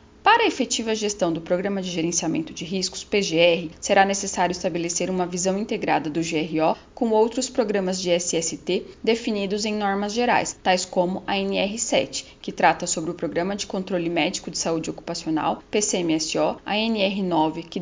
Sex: female